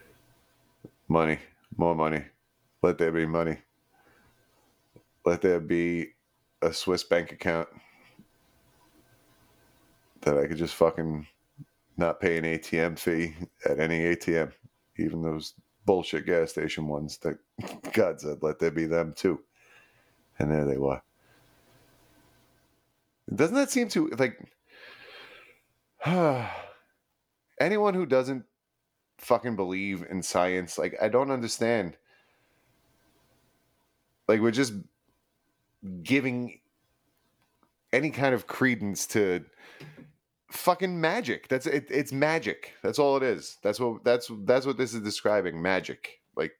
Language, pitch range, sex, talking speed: English, 80-130 Hz, male, 115 wpm